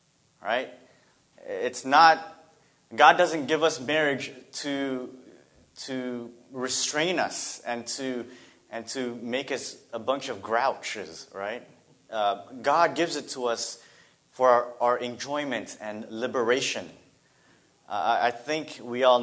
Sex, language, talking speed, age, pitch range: male, English, 125 wpm, 30-49, 115-140 Hz